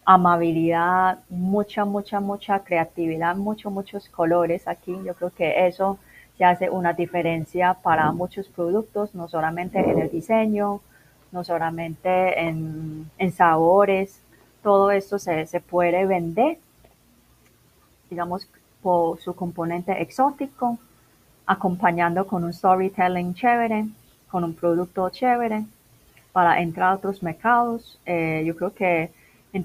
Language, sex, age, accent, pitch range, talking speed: Spanish, female, 30-49, Colombian, 170-195 Hz, 120 wpm